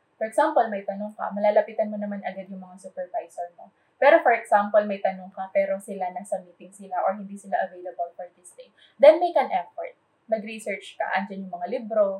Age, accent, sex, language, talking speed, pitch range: 20-39, native, female, Filipino, 200 wpm, 190-245 Hz